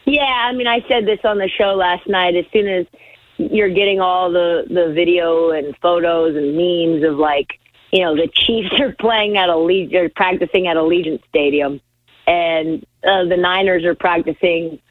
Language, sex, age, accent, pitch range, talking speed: English, female, 40-59, American, 160-200 Hz, 180 wpm